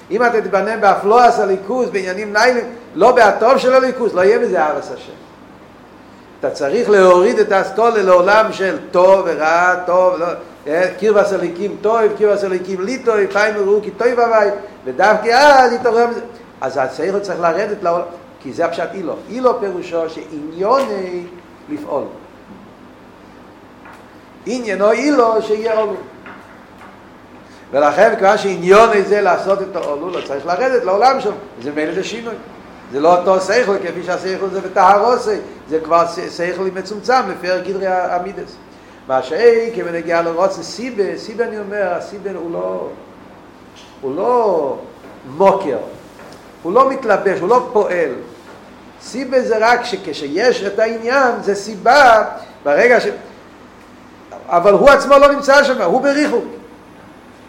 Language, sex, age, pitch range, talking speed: Hebrew, male, 50-69, 185-235 Hz, 135 wpm